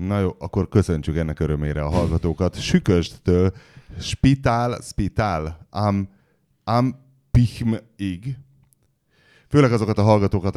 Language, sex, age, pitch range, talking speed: Hungarian, male, 30-49, 85-115 Hz, 100 wpm